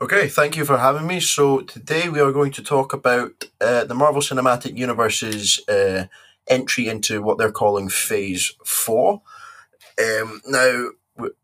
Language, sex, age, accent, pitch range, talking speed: English, male, 20-39, British, 100-130 Hz, 145 wpm